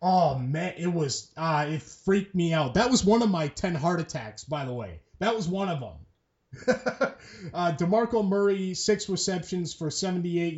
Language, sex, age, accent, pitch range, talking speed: English, male, 30-49, American, 150-180 Hz, 180 wpm